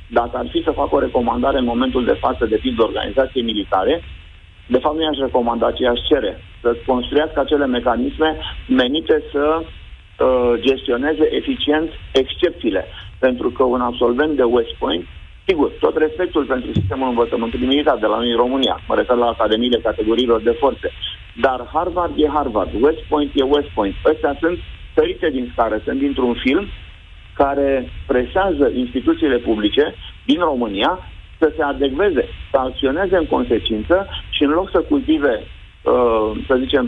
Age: 50-69